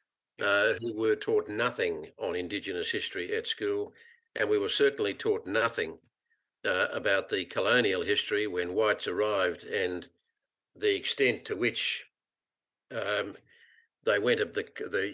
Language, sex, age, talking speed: English, male, 50-69, 140 wpm